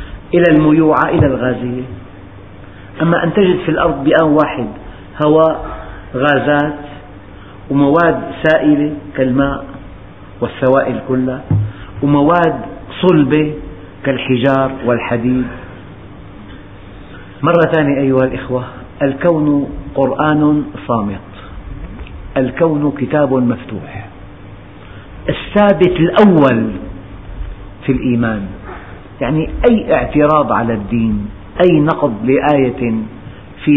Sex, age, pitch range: male, 50-69, 100-150 Hz